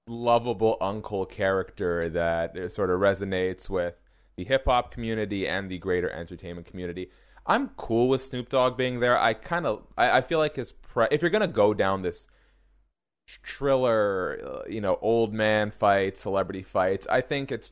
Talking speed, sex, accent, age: 170 wpm, male, American, 30-49